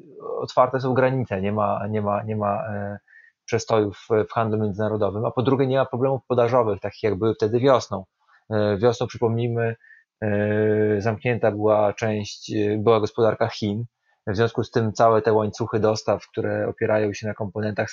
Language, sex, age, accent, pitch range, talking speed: Polish, male, 20-39, native, 105-125 Hz, 155 wpm